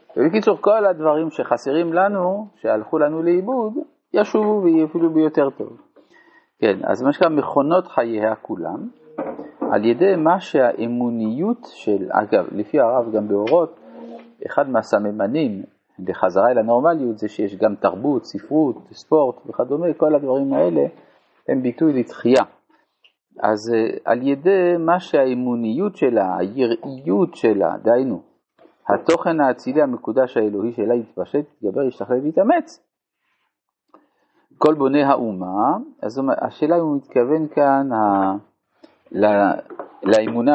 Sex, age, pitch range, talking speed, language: male, 50-69, 115-170 Hz, 115 wpm, Hebrew